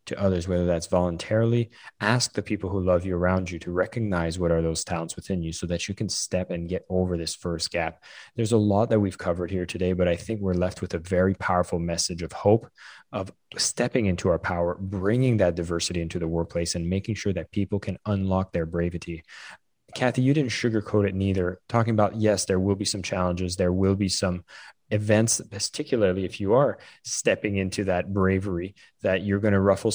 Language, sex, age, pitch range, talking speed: English, male, 20-39, 90-105 Hz, 210 wpm